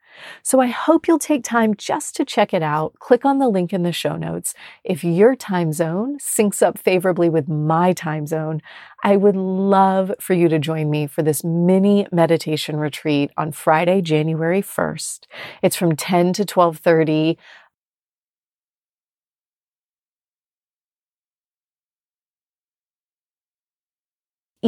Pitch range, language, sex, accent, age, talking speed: 160-205 Hz, English, female, American, 30-49, 125 wpm